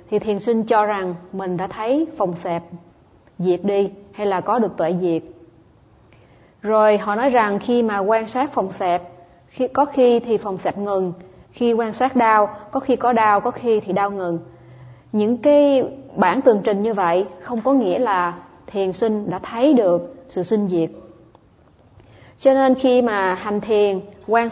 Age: 20-39